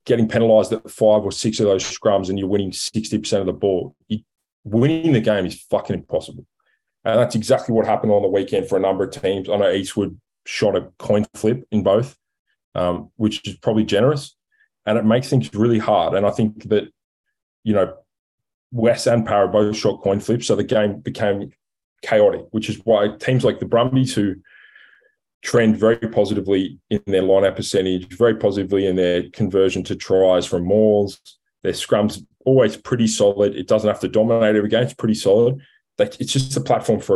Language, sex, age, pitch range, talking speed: English, male, 20-39, 100-115 Hz, 190 wpm